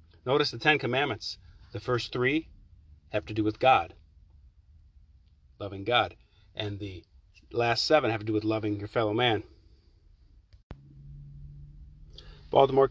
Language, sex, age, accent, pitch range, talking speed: English, male, 40-59, American, 85-135 Hz, 125 wpm